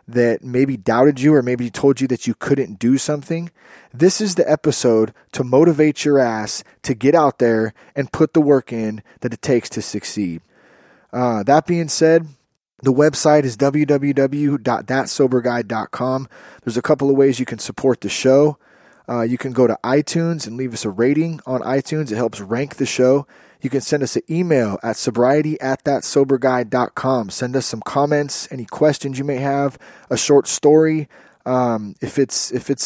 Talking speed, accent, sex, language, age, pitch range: 175 wpm, American, male, English, 20-39, 125-150 Hz